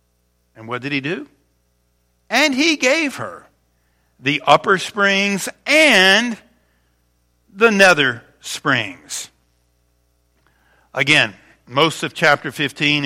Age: 50-69